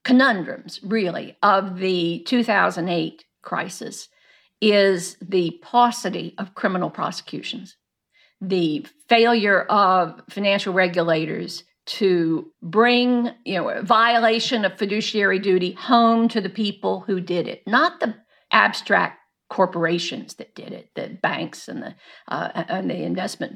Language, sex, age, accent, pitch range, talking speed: English, female, 50-69, American, 185-235 Hz, 120 wpm